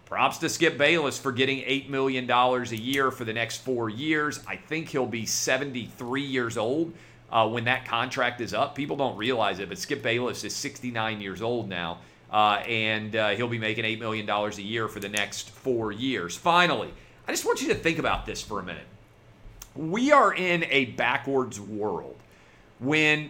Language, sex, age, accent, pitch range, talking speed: English, male, 40-59, American, 110-150 Hz, 190 wpm